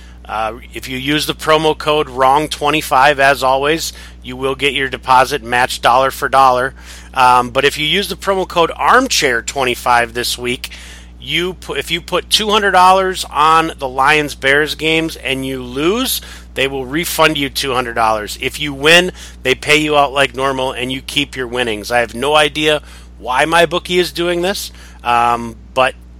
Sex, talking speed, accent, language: male, 165 wpm, American, English